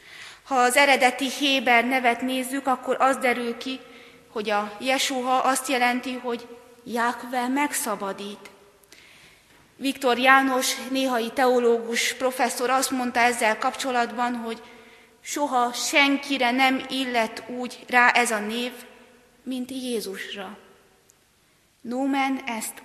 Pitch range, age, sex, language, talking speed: 235-270 Hz, 30-49, female, Hungarian, 110 wpm